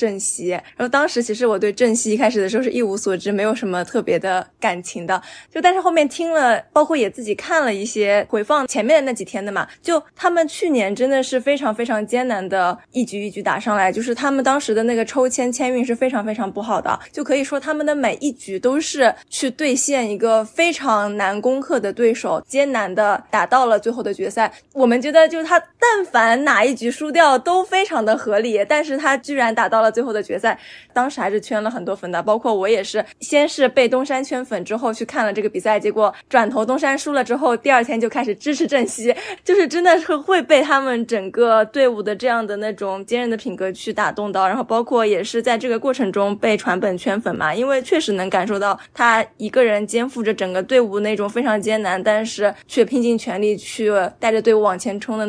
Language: Chinese